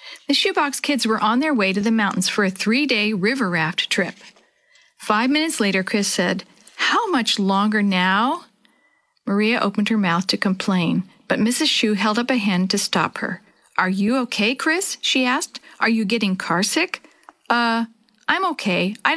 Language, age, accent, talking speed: English, 50-69, American, 170 wpm